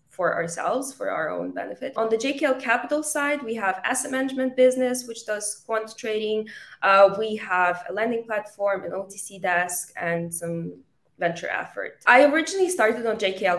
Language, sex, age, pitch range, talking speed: English, female, 20-39, 175-220 Hz, 170 wpm